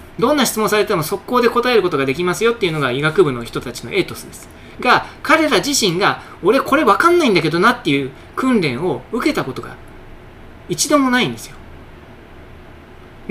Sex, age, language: male, 20-39, Japanese